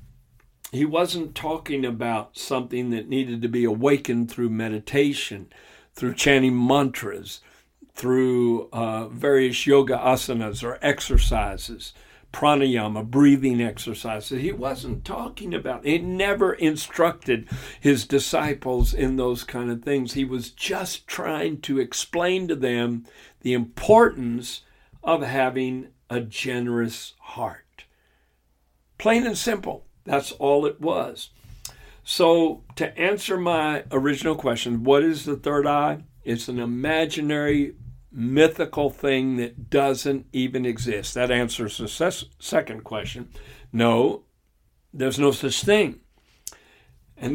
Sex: male